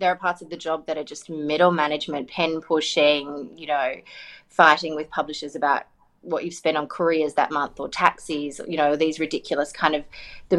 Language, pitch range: English, 150-180 Hz